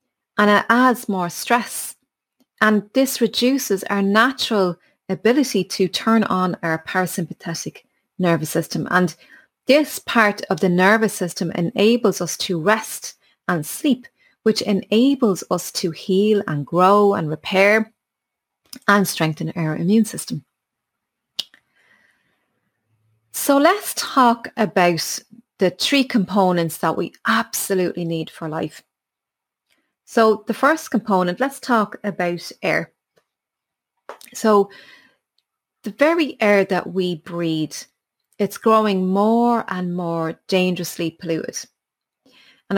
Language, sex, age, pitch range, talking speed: English, female, 30-49, 180-240 Hz, 115 wpm